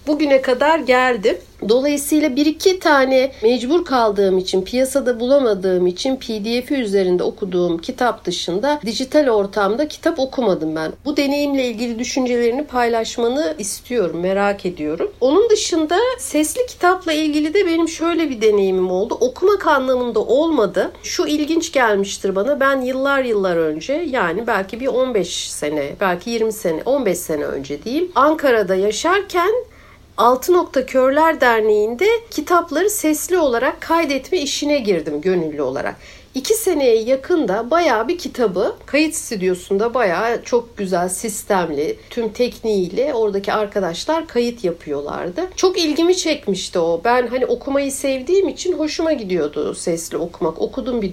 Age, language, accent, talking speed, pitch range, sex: 60-79, Turkish, native, 130 wpm, 205-315 Hz, female